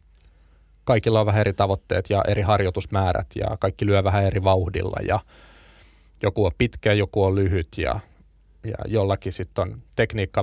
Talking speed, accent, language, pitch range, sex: 155 wpm, native, Finnish, 95-105 Hz, male